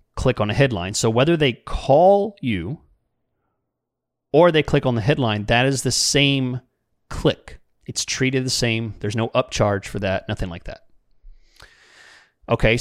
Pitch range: 110-145 Hz